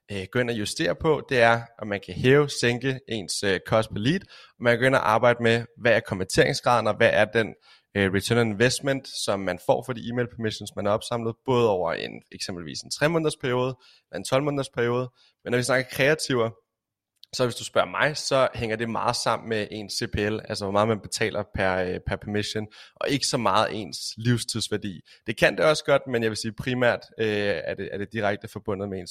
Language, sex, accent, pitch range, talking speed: Danish, male, native, 105-125 Hz, 225 wpm